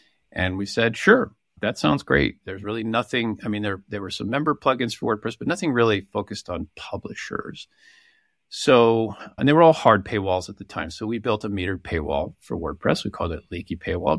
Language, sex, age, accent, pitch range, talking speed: English, male, 50-69, American, 90-110 Hz, 205 wpm